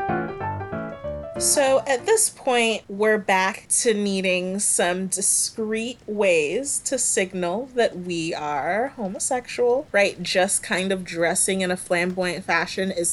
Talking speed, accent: 125 wpm, American